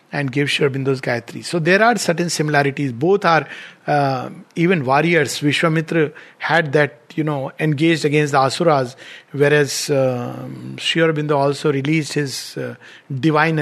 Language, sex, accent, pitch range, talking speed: English, male, Indian, 150-220 Hz, 135 wpm